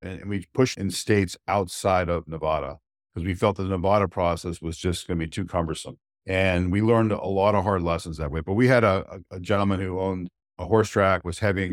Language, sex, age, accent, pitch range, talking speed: English, male, 50-69, American, 85-100 Hz, 230 wpm